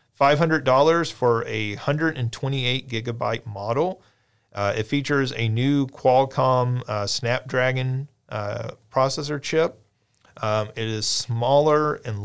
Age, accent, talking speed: 40-59, American, 105 wpm